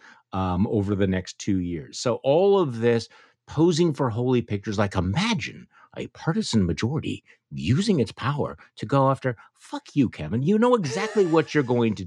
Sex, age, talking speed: male, 50-69, 175 wpm